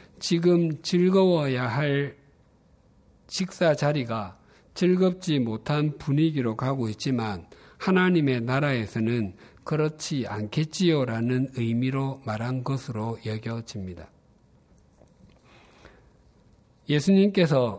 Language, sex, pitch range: Korean, male, 110-155 Hz